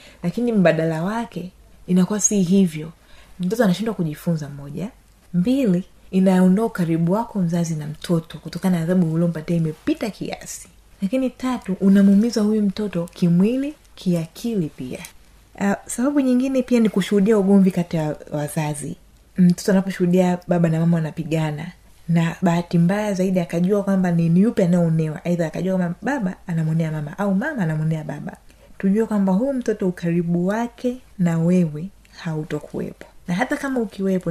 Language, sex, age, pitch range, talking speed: Swahili, female, 30-49, 170-205 Hz, 140 wpm